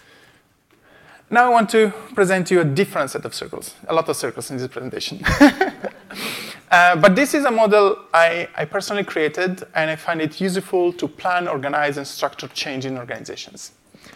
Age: 30-49